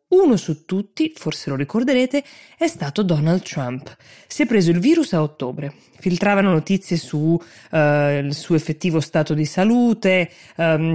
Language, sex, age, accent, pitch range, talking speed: Italian, female, 20-39, native, 150-190 Hz, 155 wpm